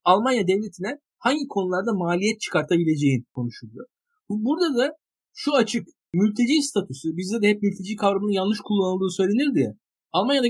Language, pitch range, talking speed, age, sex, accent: Turkish, 170-230 Hz, 125 wpm, 50-69, male, native